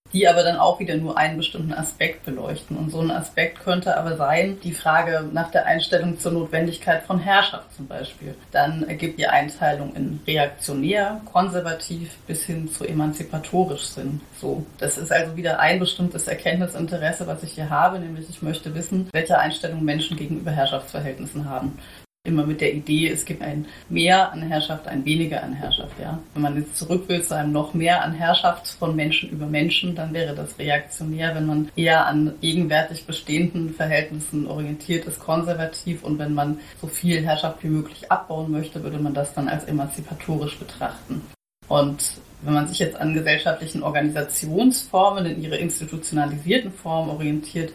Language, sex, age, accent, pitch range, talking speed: German, female, 30-49, German, 150-170 Hz, 170 wpm